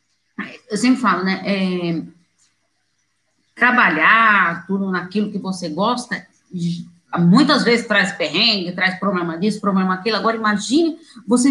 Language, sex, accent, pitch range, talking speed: Portuguese, female, Brazilian, 185-250 Hz, 120 wpm